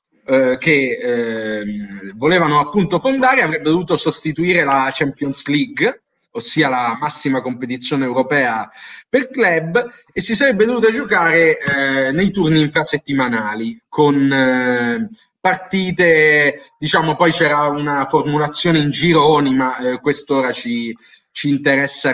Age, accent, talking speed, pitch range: 30-49, native, 115 wpm, 135-200 Hz